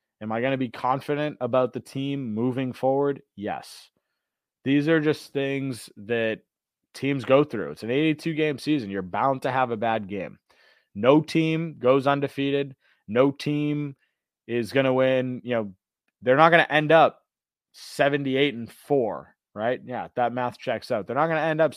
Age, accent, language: 30-49, American, English